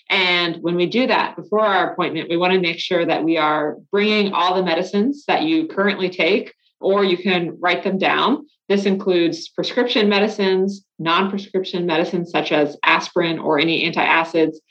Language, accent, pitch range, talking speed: English, American, 160-195 Hz, 170 wpm